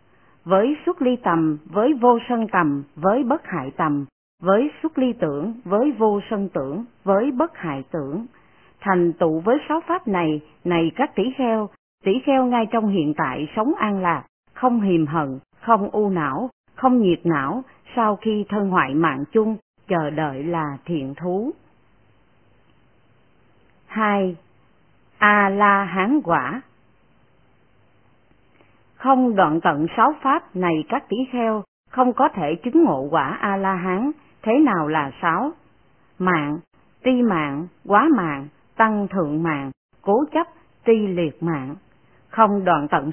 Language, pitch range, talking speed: Vietnamese, 160-245 Hz, 145 wpm